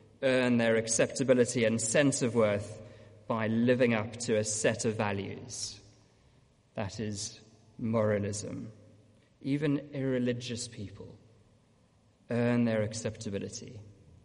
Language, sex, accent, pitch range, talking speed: English, male, British, 110-130 Hz, 100 wpm